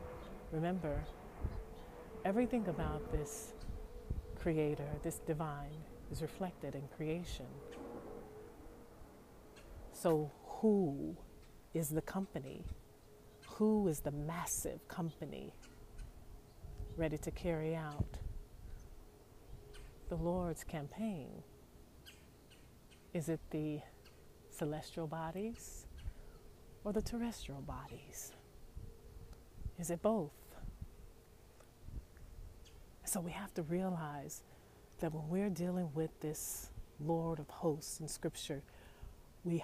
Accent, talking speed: American, 85 wpm